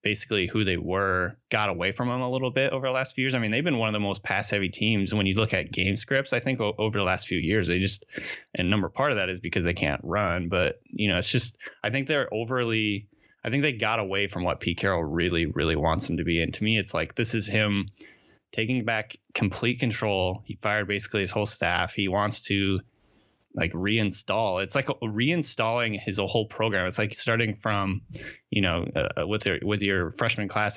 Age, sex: 20-39, male